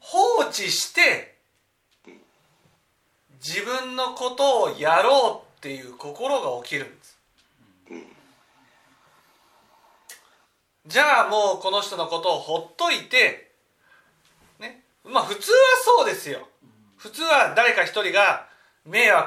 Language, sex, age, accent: Japanese, male, 40-59, native